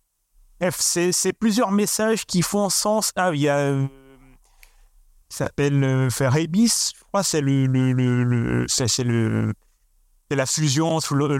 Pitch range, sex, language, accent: 130-170 Hz, male, French, French